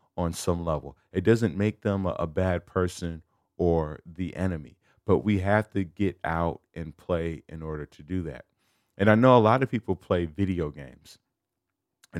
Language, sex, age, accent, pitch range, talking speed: English, male, 30-49, American, 85-105 Hz, 185 wpm